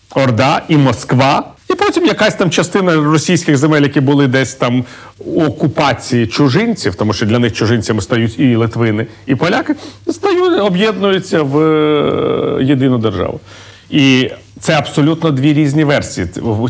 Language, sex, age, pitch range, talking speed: Ukrainian, male, 40-59, 115-150 Hz, 135 wpm